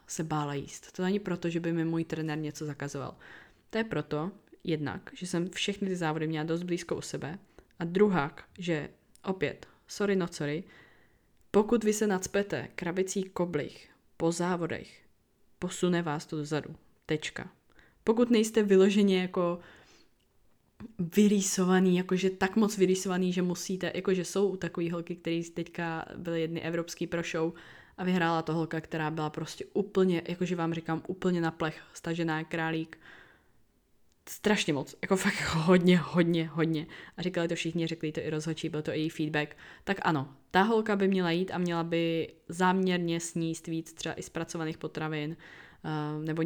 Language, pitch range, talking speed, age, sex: Czech, 155-185 Hz, 160 wpm, 20-39, female